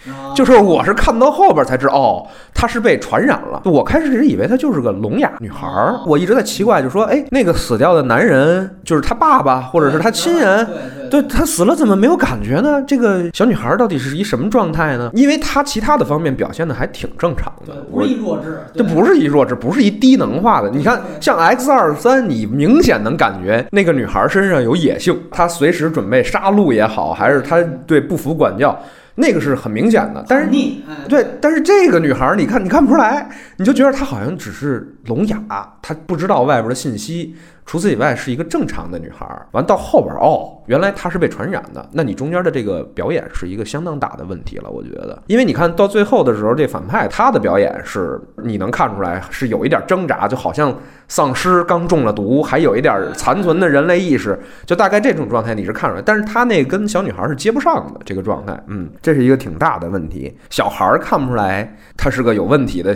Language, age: Chinese, 20-39